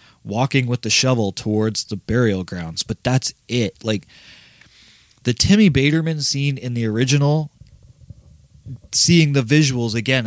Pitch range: 110-145 Hz